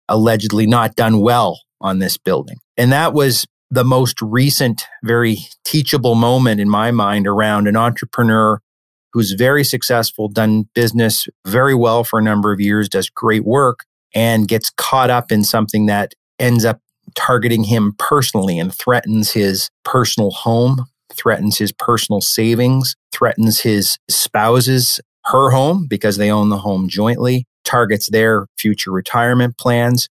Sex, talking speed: male, 145 wpm